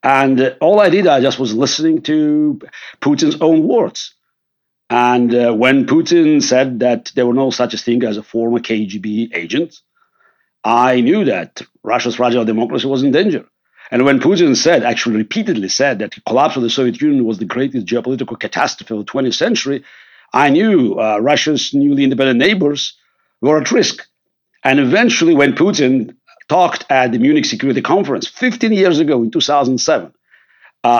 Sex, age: male, 60-79